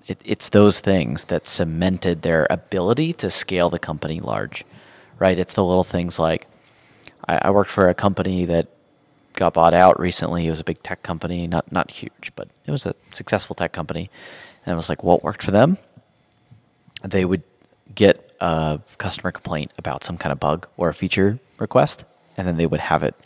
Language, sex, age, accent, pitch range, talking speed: English, male, 30-49, American, 85-110 Hz, 190 wpm